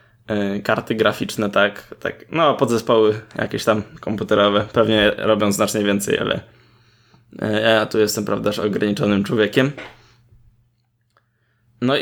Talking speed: 110 wpm